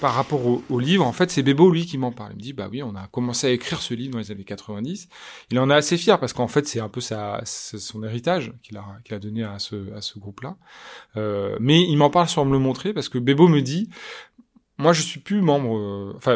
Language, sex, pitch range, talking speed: French, male, 115-155 Hz, 255 wpm